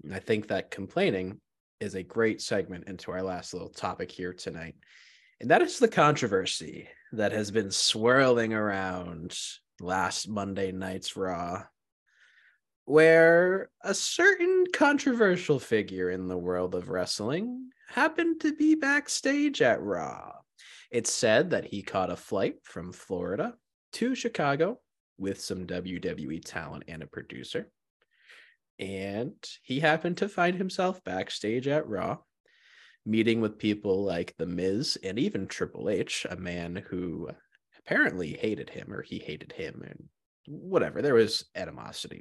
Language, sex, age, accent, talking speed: English, male, 20-39, American, 140 wpm